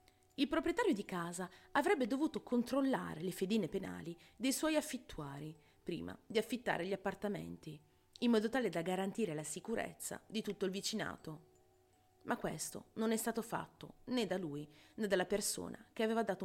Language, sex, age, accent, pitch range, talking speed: Italian, female, 30-49, native, 155-220 Hz, 160 wpm